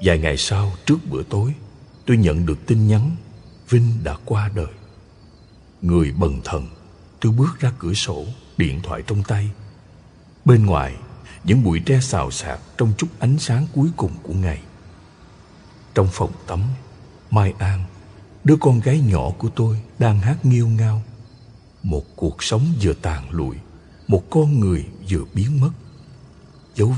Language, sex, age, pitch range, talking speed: Vietnamese, male, 60-79, 90-125 Hz, 155 wpm